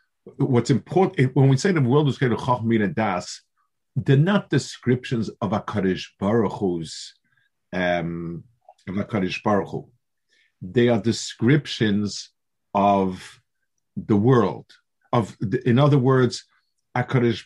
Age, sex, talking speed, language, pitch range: 50-69, male, 125 wpm, English, 100-130 Hz